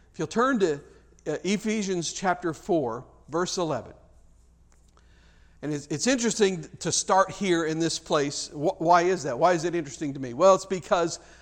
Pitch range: 150-185 Hz